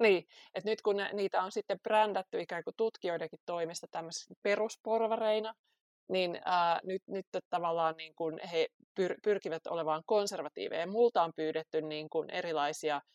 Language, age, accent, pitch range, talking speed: Finnish, 30-49, native, 165-210 Hz, 130 wpm